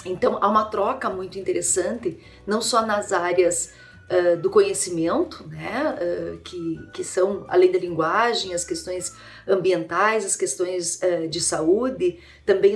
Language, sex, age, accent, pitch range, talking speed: Portuguese, female, 40-59, Brazilian, 180-255 Hz, 145 wpm